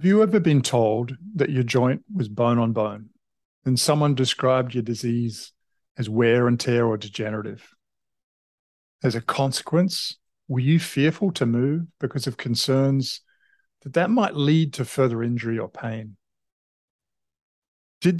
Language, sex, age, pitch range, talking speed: English, male, 40-59, 120-150 Hz, 145 wpm